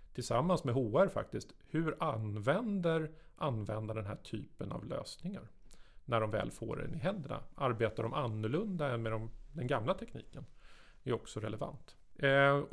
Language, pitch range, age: Swedish, 110-140 Hz, 40-59